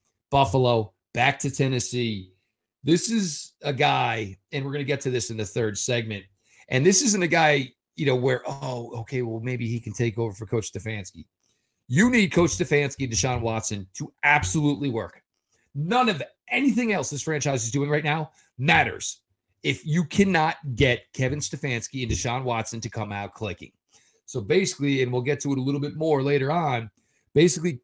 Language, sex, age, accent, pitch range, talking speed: English, male, 40-59, American, 115-145 Hz, 185 wpm